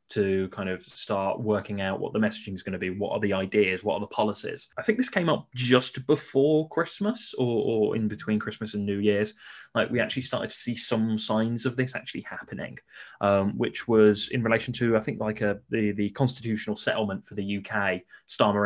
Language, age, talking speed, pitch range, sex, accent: English, 20-39, 210 wpm, 100-115 Hz, male, British